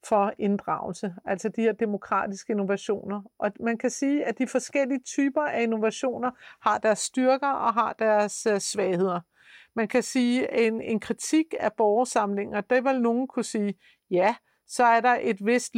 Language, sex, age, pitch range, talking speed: Danish, female, 50-69, 210-250 Hz, 165 wpm